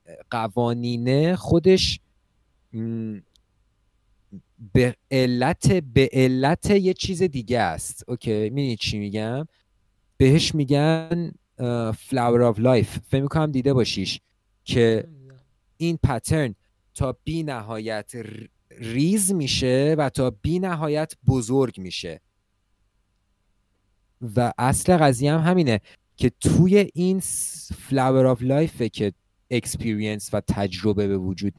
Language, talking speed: Persian, 100 wpm